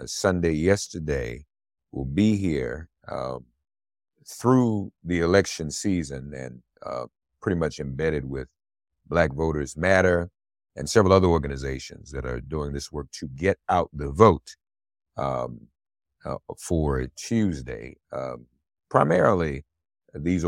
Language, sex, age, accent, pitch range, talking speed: English, male, 50-69, American, 70-85 Hz, 115 wpm